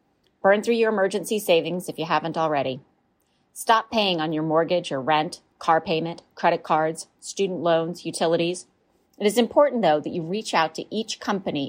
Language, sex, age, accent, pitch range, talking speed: English, female, 30-49, American, 160-210 Hz, 175 wpm